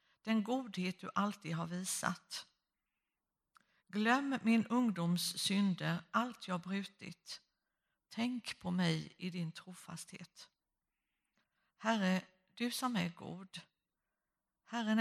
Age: 60-79